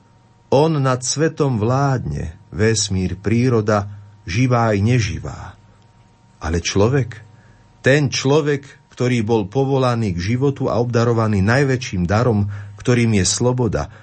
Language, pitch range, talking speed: Slovak, 100-125 Hz, 105 wpm